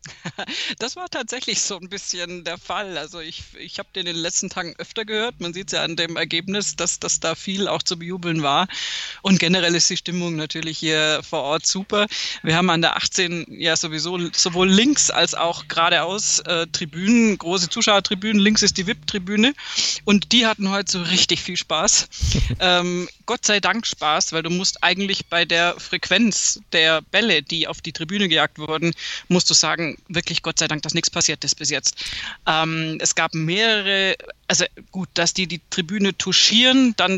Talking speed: 190 wpm